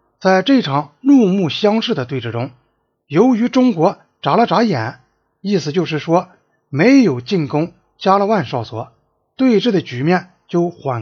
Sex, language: male, Chinese